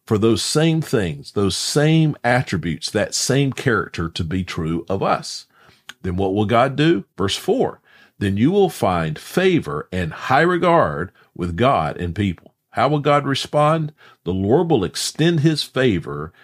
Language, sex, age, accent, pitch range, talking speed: English, male, 50-69, American, 90-140 Hz, 160 wpm